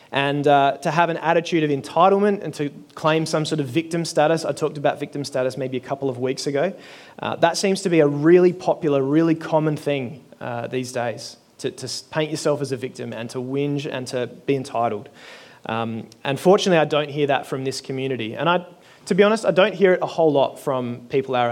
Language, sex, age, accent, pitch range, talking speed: English, male, 30-49, Australian, 135-170 Hz, 220 wpm